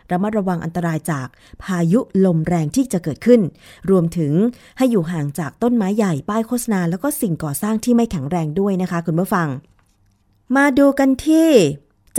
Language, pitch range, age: Thai, 170-210 Hz, 20-39